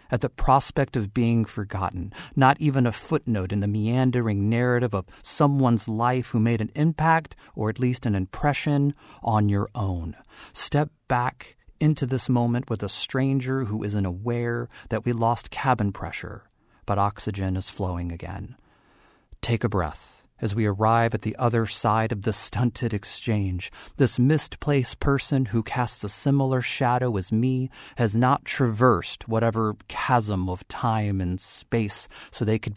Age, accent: 40-59, American